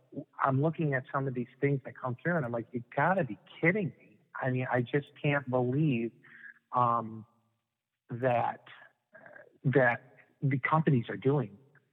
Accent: American